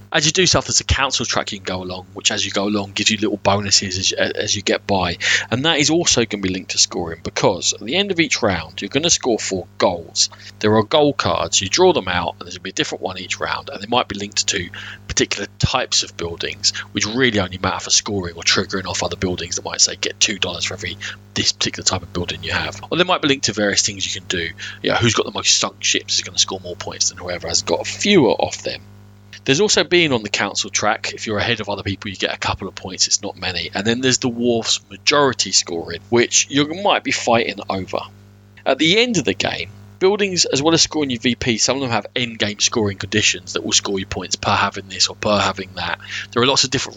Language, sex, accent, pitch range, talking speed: English, male, British, 95-115 Hz, 265 wpm